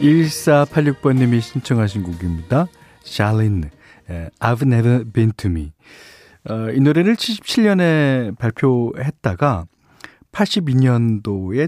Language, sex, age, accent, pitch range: Korean, male, 40-59, native, 95-140 Hz